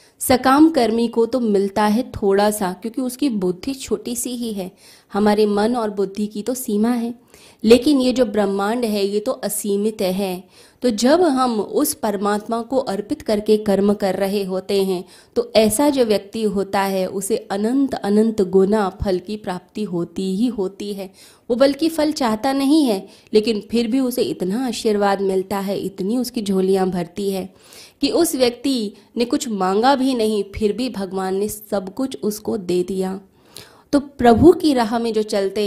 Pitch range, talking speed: 195-240 Hz, 175 wpm